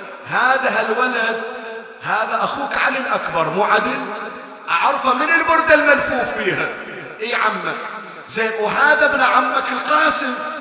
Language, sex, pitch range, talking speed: Arabic, male, 230-295 Hz, 115 wpm